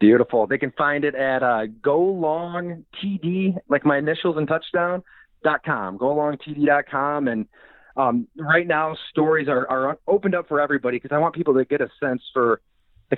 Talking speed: 190 wpm